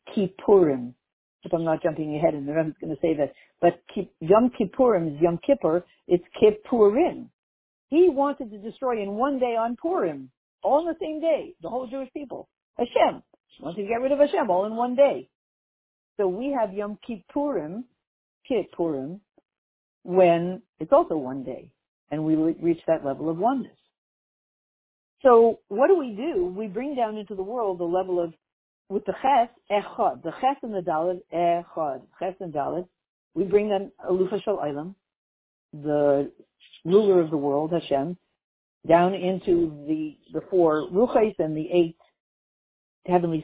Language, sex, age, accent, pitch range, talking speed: English, female, 50-69, American, 165-235 Hz, 160 wpm